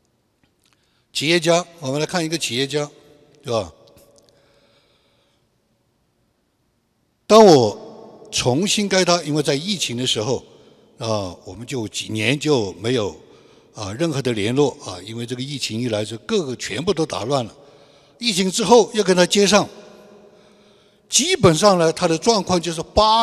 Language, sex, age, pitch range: Chinese, male, 60-79, 135-210 Hz